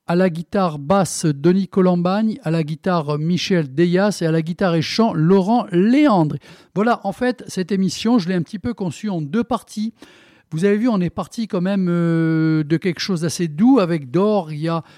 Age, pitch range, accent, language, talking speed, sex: 50-69, 165-215 Hz, French, French, 195 wpm, male